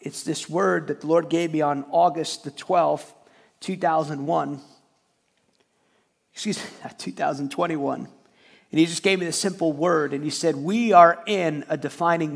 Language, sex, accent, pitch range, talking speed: English, male, American, 165-205 Hz, 155 wpm